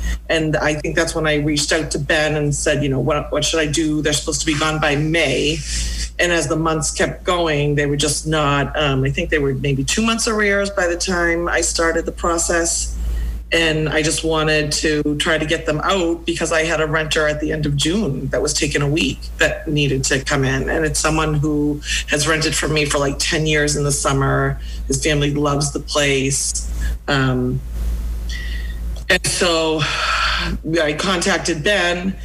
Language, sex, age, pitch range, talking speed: English, female, 30-49, 140-160 Hz, 200 wpm